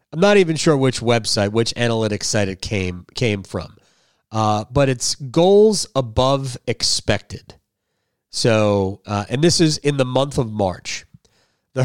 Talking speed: 150 wpm